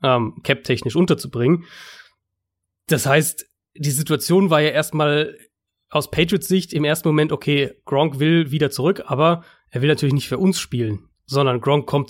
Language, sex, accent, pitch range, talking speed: German, male, German, 135-160 Hz, 165 wpm